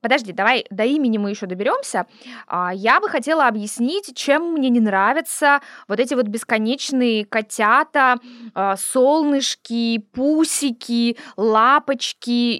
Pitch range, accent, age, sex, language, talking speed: 215-275 Hz, native, 20-39, female, Russian, 110 wpm